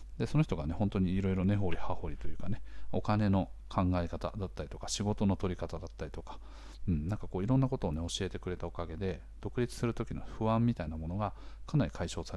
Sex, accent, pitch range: male, native, 80-120 Hz